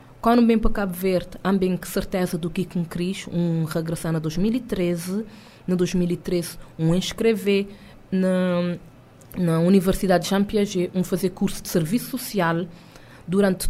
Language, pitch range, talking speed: Portuguese, 175-220 Hz, 145 wpm